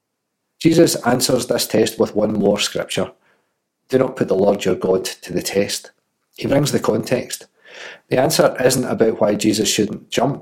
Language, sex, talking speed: English, male, 175 wpm